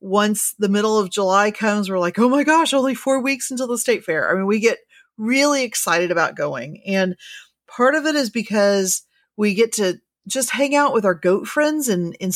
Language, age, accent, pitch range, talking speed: English, 40-59, American, 175-220 Hz, 215 wpm